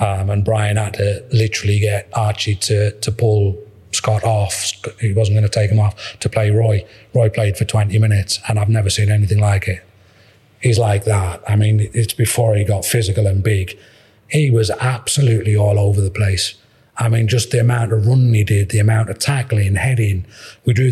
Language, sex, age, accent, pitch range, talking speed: English, male, 30-49, British, 105-115 Hz, 200 wpm